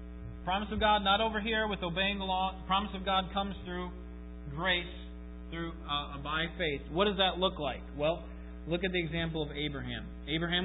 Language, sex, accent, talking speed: English, male, American, 185 wpm